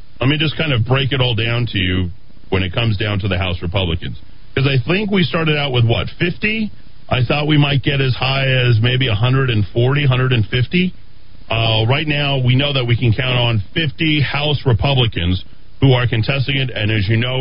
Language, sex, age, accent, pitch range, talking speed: English, male, 40-59, American, 110-140 Hz, 205 wpm